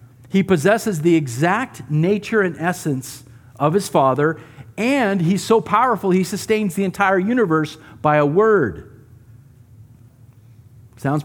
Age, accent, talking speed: 50-69, American, 125 wpm